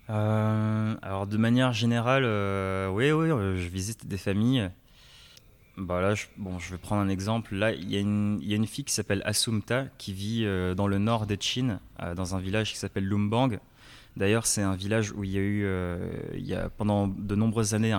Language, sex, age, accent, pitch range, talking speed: French, male, 20-39, French, 95-115 Hz, 210 wpm